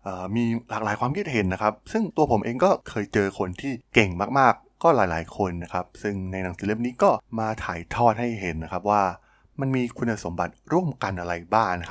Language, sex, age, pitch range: Thai, male, 20-39, 95-120 Hz